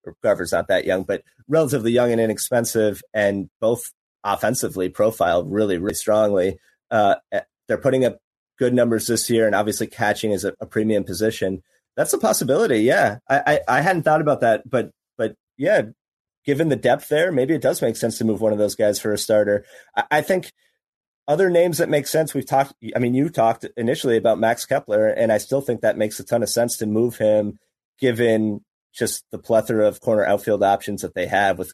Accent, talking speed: American, 205 wpm